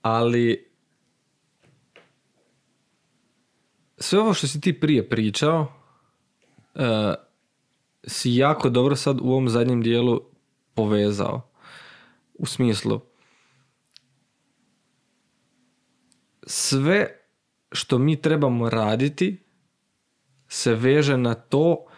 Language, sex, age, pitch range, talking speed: Croatian, male, 20-39, 120-145 Hz, 80 wpm